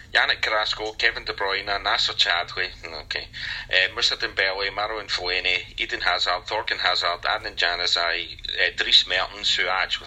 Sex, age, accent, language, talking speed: male, 30-49, British, English, 150 wpm